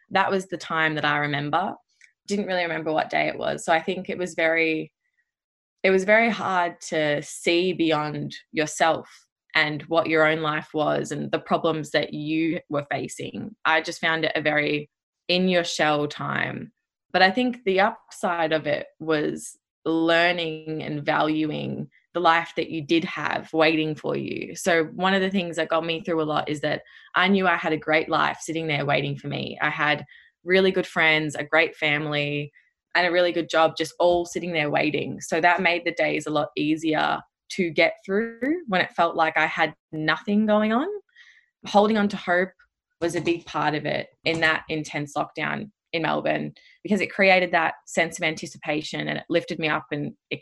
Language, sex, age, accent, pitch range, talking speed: English, female, 20-39, Australian, 155-180 Hz, 195 wpm